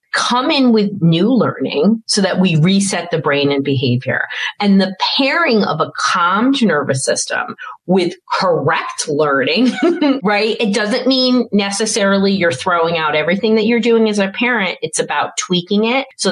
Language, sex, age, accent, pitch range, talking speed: English, female, 40-59, American, 165-245 Hz, 160 wpm